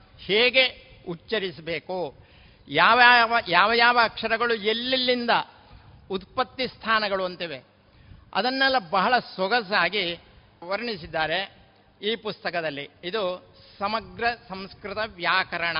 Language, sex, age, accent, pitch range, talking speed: Kannada, male, 60-79, native, 175-230 Hz, 75 wpm